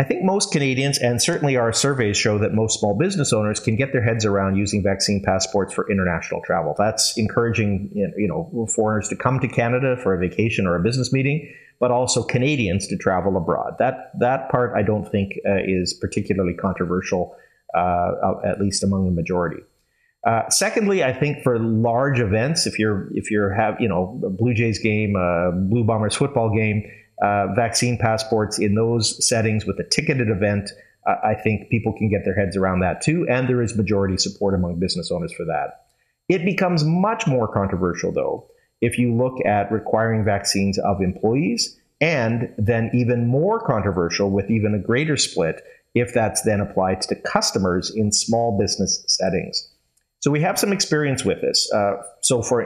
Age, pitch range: 30-49, 100-125 Hz